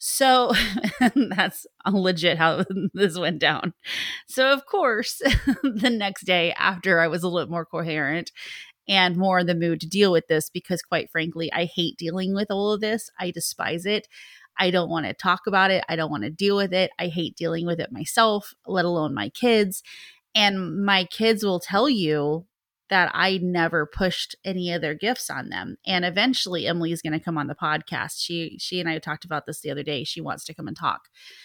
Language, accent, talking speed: English, American, 205 wpm